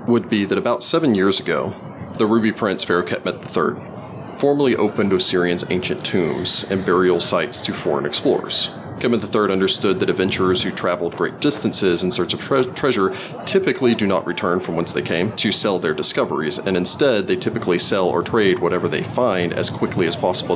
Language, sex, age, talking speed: English, male, 30-49, 185 wpm